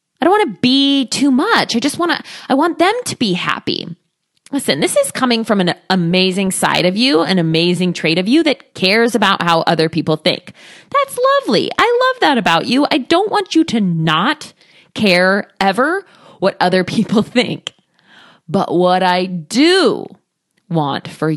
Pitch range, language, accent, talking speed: 175-270 Hz, English, American, 180 wpm